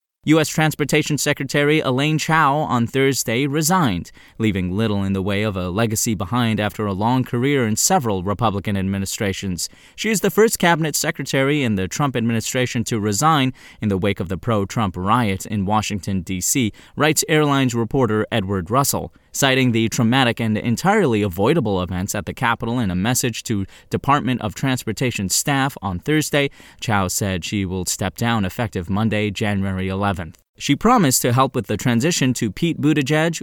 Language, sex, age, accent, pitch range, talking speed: English, male, 20-39, American, 100-135 Hz, 165 wpm